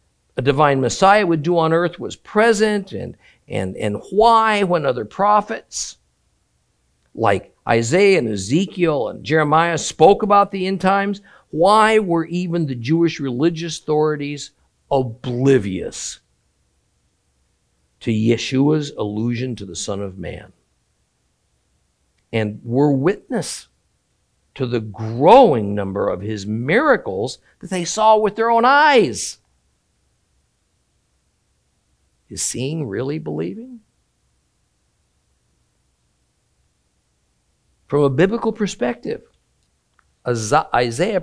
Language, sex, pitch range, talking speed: English, male, 110-185 Hz, 100 wpm